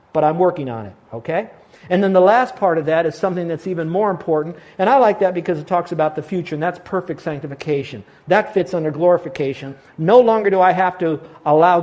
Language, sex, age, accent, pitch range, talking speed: English, male, 50-69, American, 140-180 Hz, 225 wpm